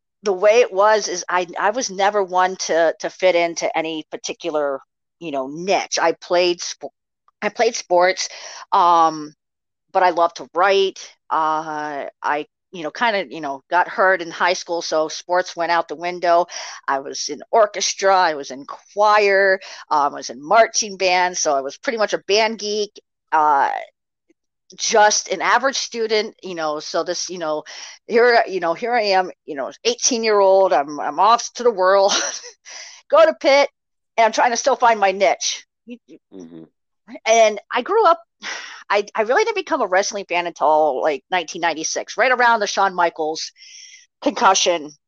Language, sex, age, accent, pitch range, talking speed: English, female, 40-59, American, 170-225 Hz, 175 wpm